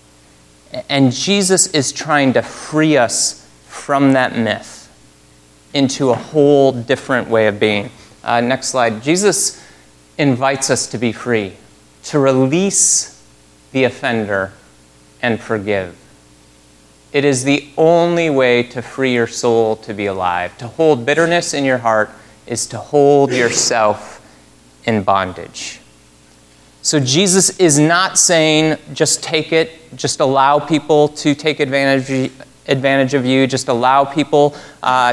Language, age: English, 30-49